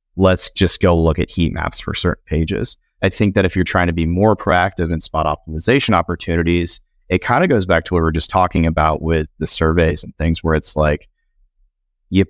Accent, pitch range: American, 80-95 Hz